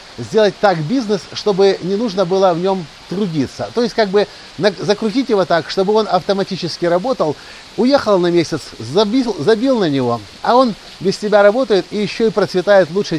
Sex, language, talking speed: male, Russian, 175 wpm